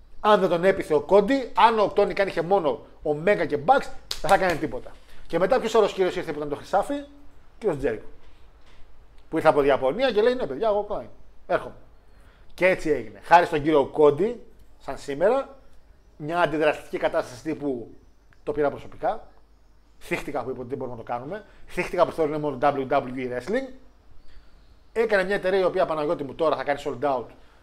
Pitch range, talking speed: 140-195 Hz, 185 wpm